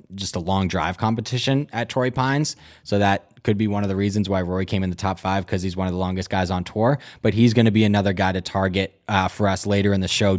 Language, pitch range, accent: English, 95-115 Hz, American